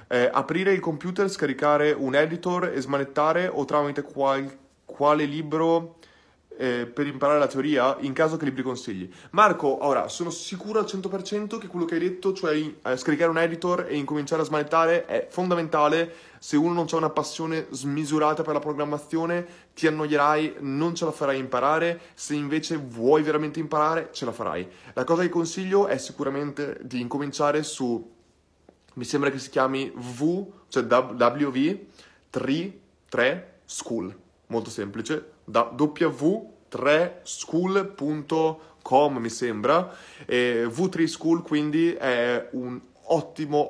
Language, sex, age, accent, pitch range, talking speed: Italian, male, 20-39, native, 130-165 Hz, 135 wpm